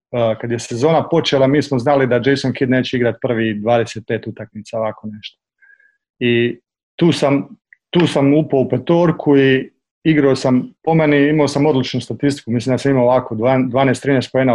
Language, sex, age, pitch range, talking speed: Croatian, male, 40-59, 120-145 Hz, 175 wpm